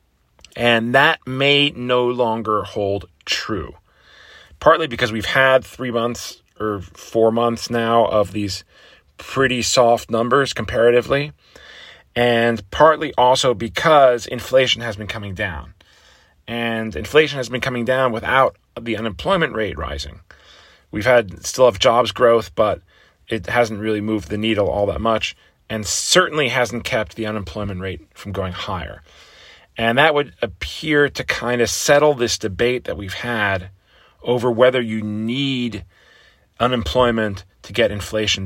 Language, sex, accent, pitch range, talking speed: English, male, American, 100-125 Hz, 140 wpm